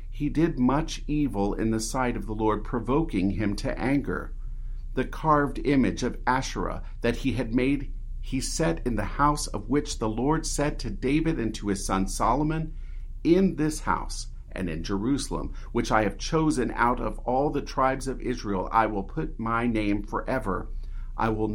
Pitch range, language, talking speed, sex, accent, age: 100-135 Hz, English, 180 wpm, male, American, 50-69